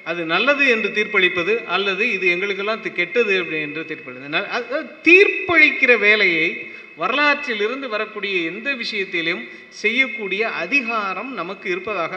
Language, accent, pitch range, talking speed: Tamil, native, 180-255 Hz, 105 wpm